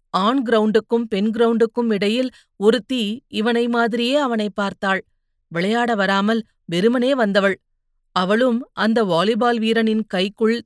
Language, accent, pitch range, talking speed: Tamil, native, 200-235 Hz, 100 wpm